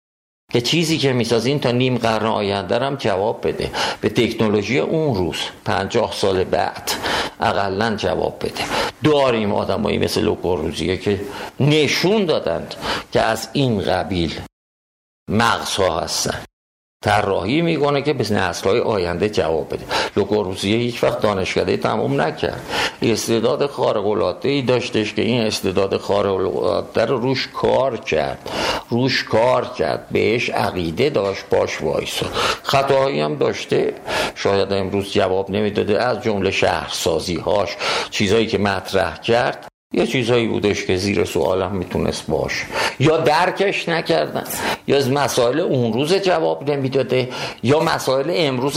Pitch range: 110-150 Hz